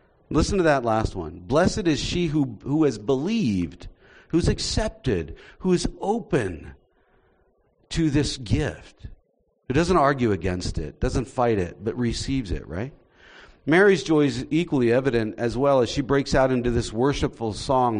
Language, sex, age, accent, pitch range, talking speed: English, male, 50-69, American, 125-175 Hz, 155 wpm